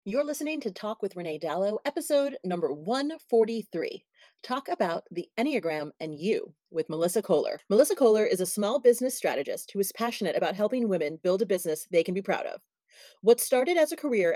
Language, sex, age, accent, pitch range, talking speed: English, female, 30-49, American, 195-260 Hz, 190 wpm